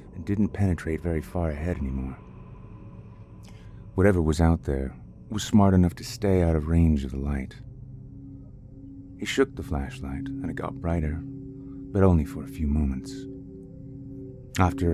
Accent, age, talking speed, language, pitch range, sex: American, 30-49, 150 wpm, English, 80-110 Hz, male